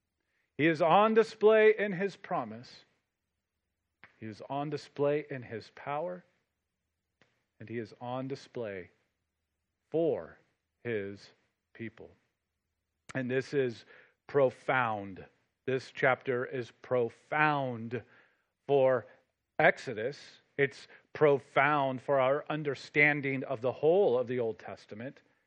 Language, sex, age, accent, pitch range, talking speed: English, male, 40-59, American, 110-150 Hz, 105 wpm